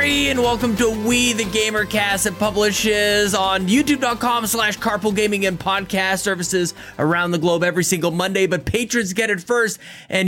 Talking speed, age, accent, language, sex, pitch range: 165 wpm, 20-39, American, English, male, 145-205 Hz